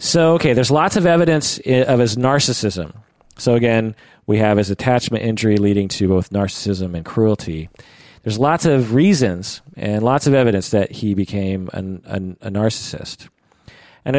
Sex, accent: male, American